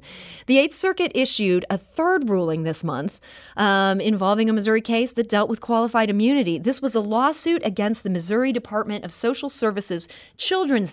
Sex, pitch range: female, 185-255 Hz